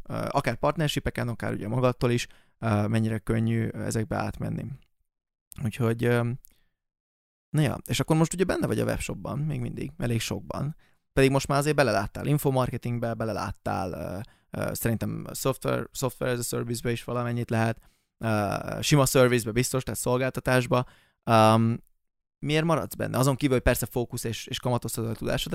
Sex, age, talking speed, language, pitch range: male, 20-39, 140 wpm, Hungarian, 110-130 Hz